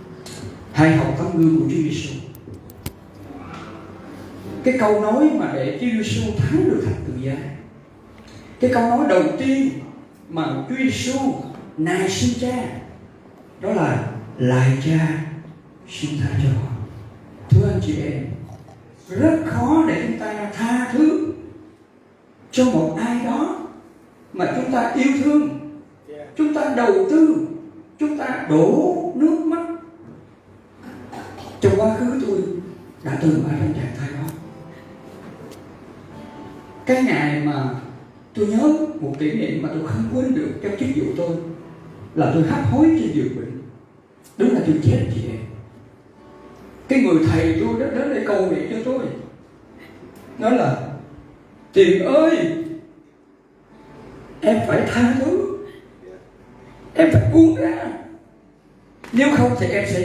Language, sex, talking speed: Vietnamese, male, 135 wpm